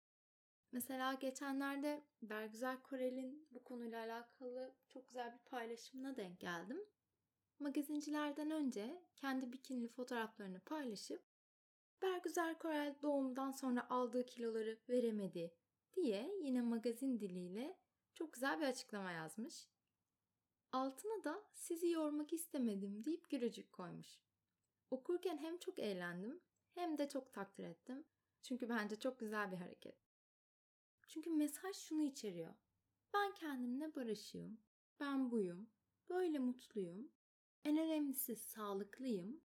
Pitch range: 225-305 Hz